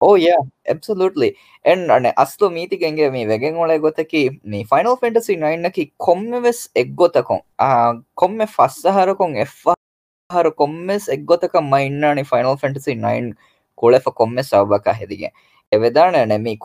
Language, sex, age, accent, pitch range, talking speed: English, female, 10-29, Indian, 110-150 Hz, 120 wpm